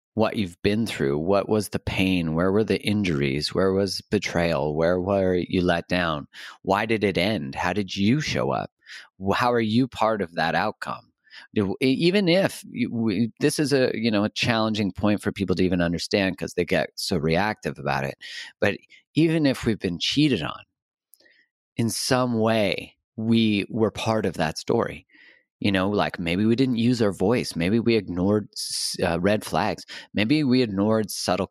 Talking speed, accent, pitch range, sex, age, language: 175 wpm, American, 95-115 Hz, male, 30-49, English